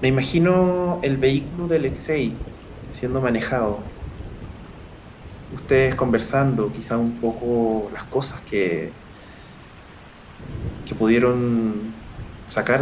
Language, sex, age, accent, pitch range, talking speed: Spanish, male, 20-39, Argentinian, 100-125 Hz, 90 wpm